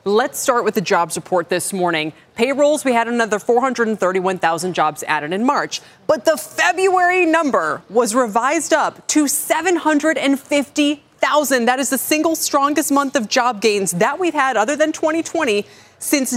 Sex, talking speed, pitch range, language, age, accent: female, 155 wpm, 200-285 Hz, English, 20-39, American